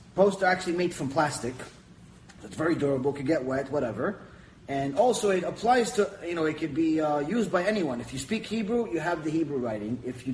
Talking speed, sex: 215 wpm, male